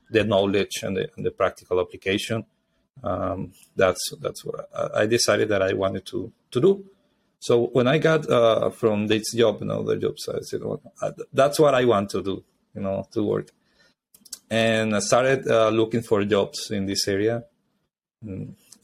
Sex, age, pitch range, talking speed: male, 30-49, 100-130 Hz, 185 wpm